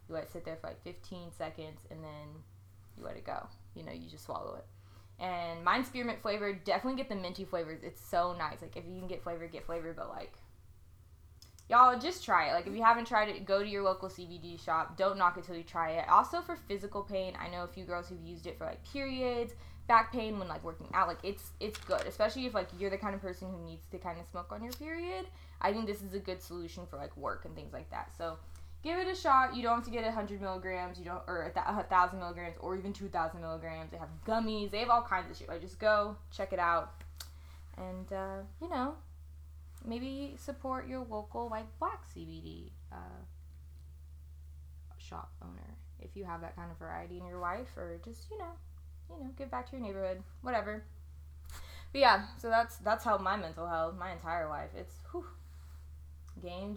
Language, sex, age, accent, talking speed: English, female, 10-29, American, 220 wpm